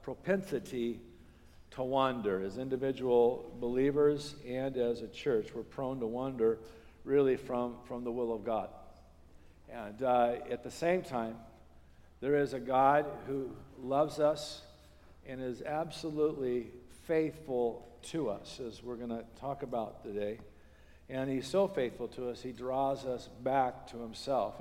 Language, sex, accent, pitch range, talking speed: English, male, American, 115-140 Hz, 145 wpm